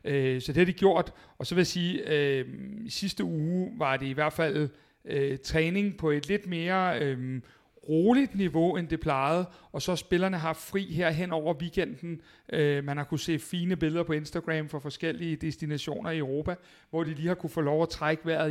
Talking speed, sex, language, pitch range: 205 wpm, male, Danish, 150-175 Hz